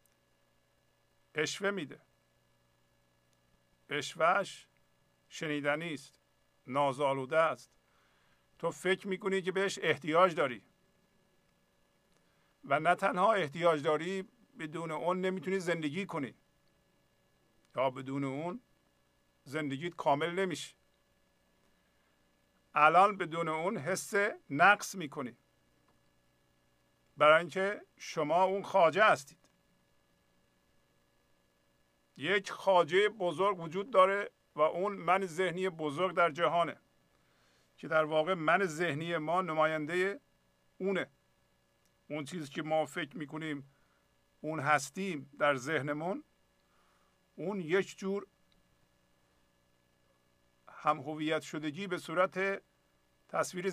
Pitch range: 140-185 Hz